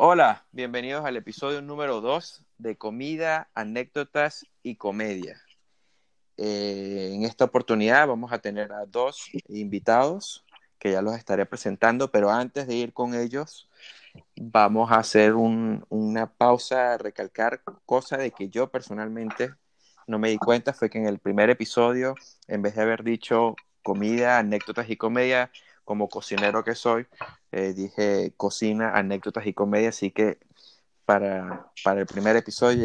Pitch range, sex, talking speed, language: 105-125 Hz, male, 145 wpm, Spanish